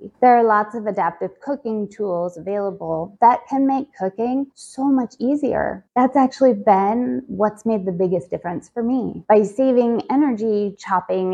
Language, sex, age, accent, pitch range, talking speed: English, female, 20-39, American, 195-245 Hz, 155 wpm